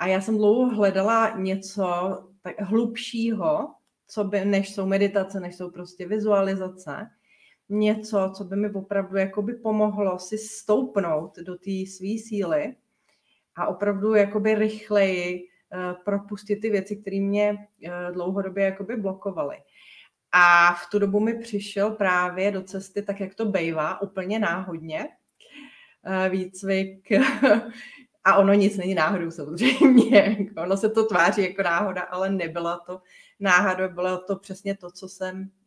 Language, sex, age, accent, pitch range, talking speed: Czech, female, 30-49, native, 180-205 Hz, 130 wpm